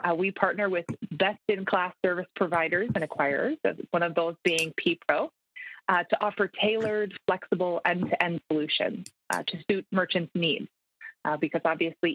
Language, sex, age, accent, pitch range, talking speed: English, female, 20-39, American, 170-210 Hz, 140 wpm